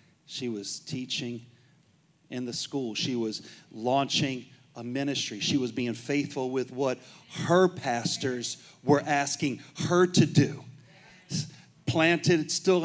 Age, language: 40-59, English